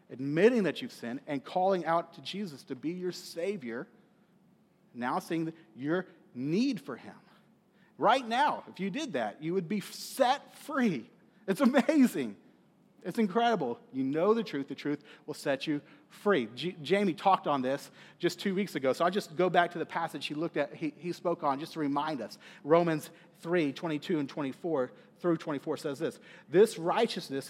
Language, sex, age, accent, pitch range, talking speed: English, male, 40-59, American, 150-200 Hz, 180 wpm